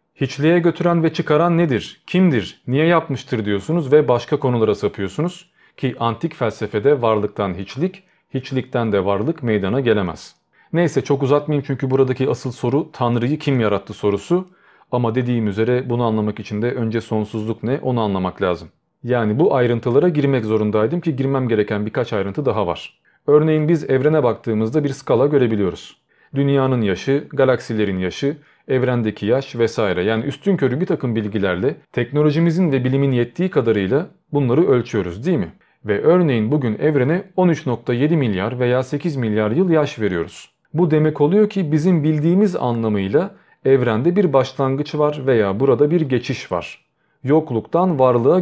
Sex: male